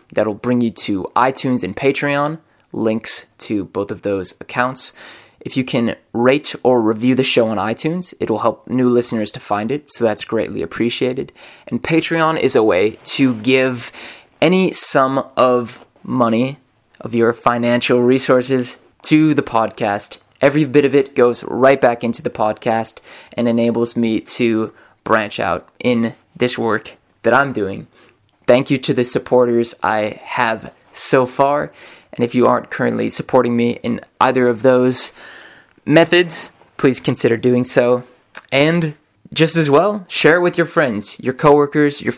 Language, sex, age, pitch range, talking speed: English, male, 20-39, 115-135 Hz, 160 wpm